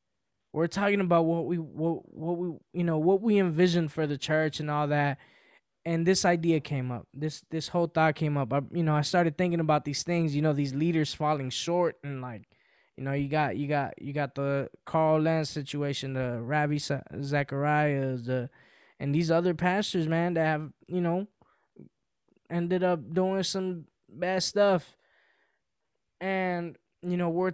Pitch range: 140-170 Hz